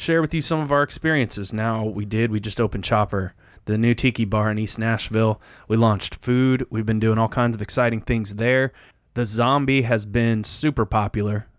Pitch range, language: 105-125 Hz, English